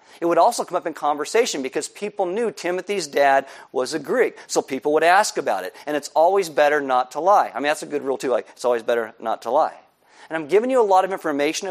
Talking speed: 255 wpm